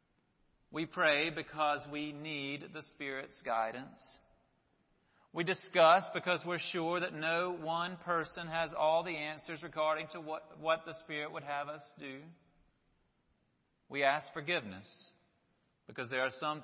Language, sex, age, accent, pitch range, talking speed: English, male, 40-59, American, 135-165 Hz, 135 wpm